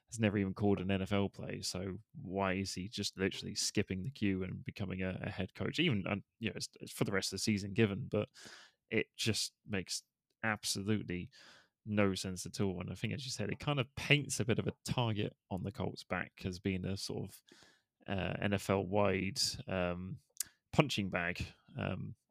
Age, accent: 20-39, British